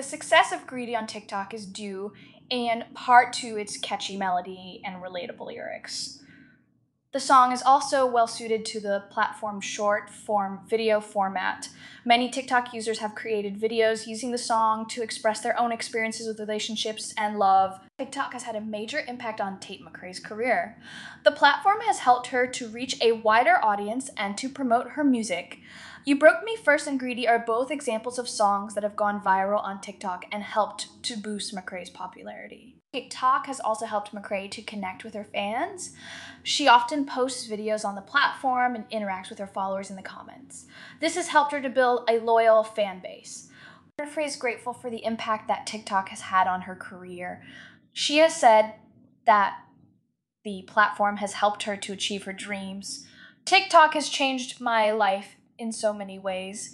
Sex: female